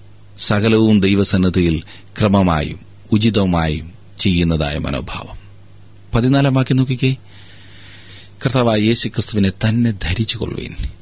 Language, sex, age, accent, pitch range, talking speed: Malayalam, male, 30-49, native, 95-110 Hz, 55 wpm